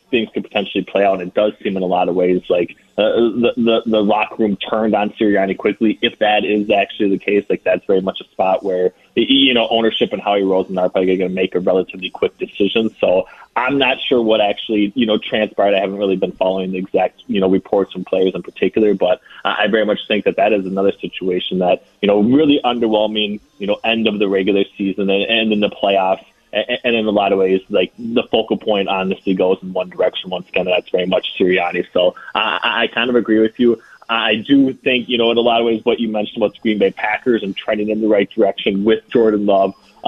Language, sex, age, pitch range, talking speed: English, male, 20-39, 95-115 Hz, 240 wpm